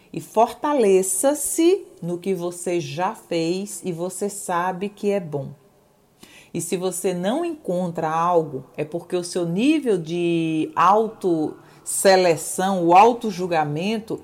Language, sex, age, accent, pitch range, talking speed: Portuguese, female, 40-59, Brazilian, 165-210 Hz, 120 wpm